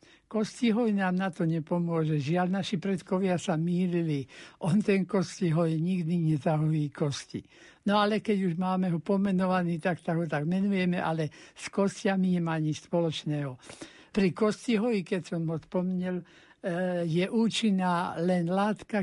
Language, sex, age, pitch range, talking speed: Slovak, male, 60-79, 165-200 Hz, 140 wpm